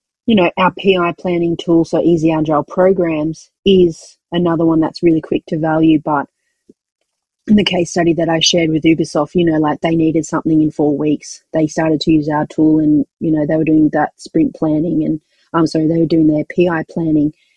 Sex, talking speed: female, 210 wpm